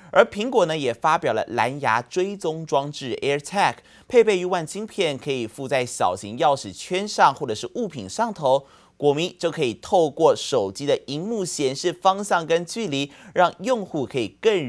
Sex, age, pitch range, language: male, 30-49, 120-170 Hz, Chinese